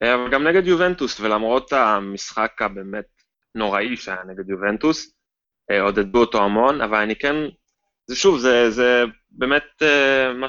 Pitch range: 100-125 Hz